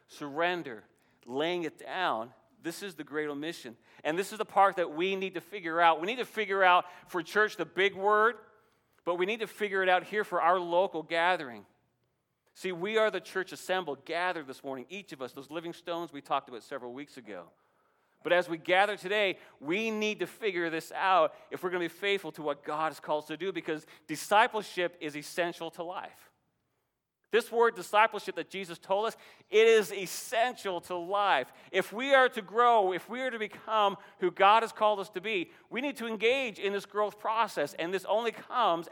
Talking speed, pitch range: 210 wpm, 170-210 Hz